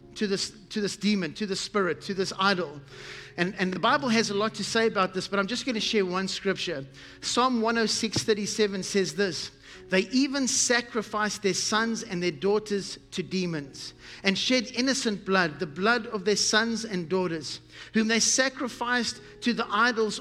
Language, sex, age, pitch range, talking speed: English, male, 50-69, 190-230 Hz, 180 wpm